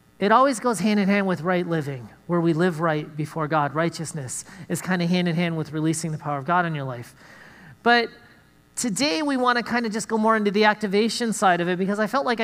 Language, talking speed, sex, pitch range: English, 225 wpm, male, 175-230 Hz